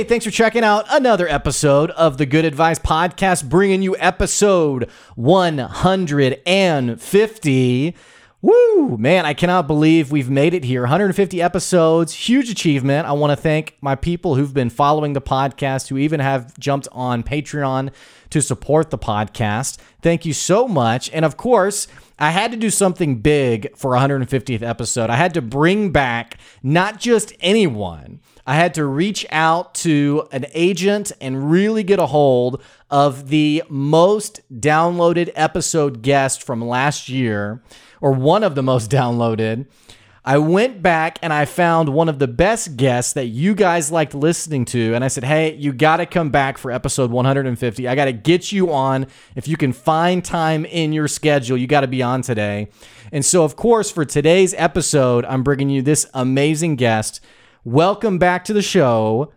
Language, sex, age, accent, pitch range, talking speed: English, male, 30-49, American, 130-170 Hz, 175 wpm